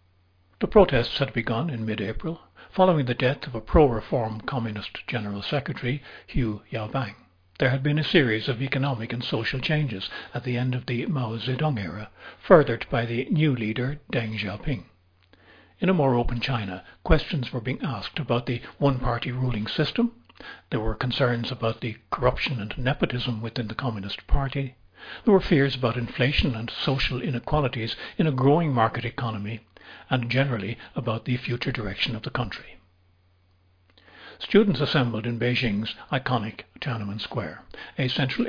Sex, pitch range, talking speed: male, 110-140 Hz, 155 wpm